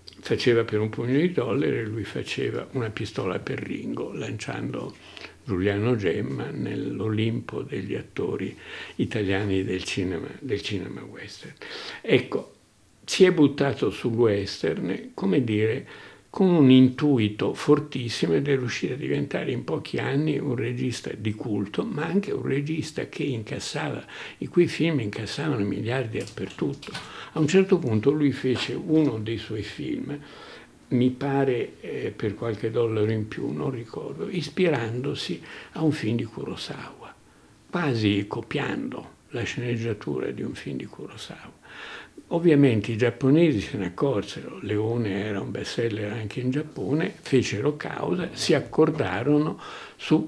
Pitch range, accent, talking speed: 110-145 Hz, native, 135 wpm